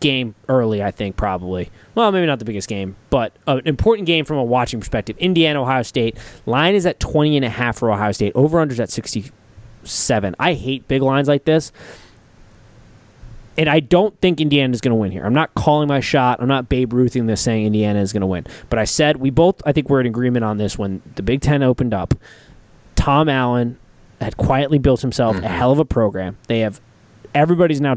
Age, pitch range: 20-39, 105-145 Hz